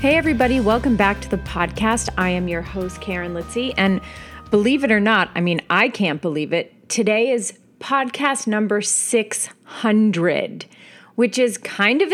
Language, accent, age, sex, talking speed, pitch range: English, American, 30-49, female, 165 wpm, 195-240 Hz